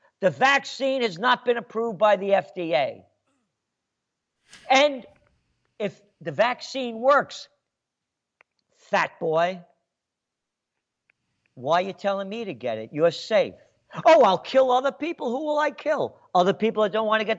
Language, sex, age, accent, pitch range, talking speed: English, male, 50-69, American, 170-250 Hz, 145 wpm